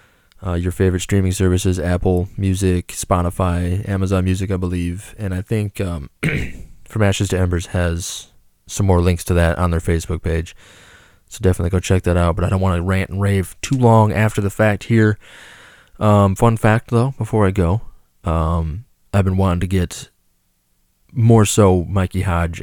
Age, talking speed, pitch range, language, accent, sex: 20-39, 180 wpm, 85-100 Hz, English, American, male